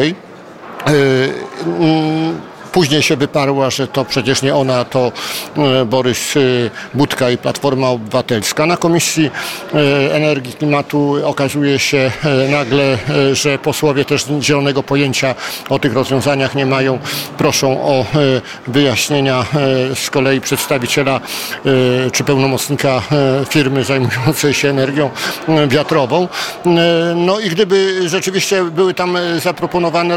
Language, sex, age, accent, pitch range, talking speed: Polish, male, 50-69, native, 140-165 Hz, 110 wpm